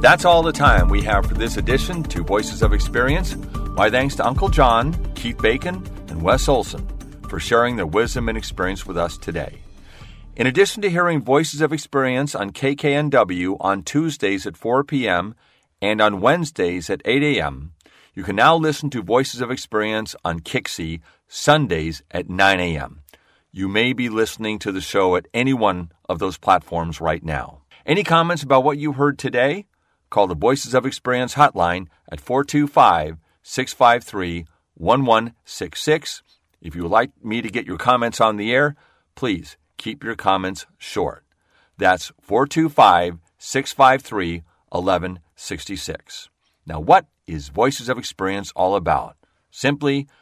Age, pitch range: 40-59, 90-135 Hz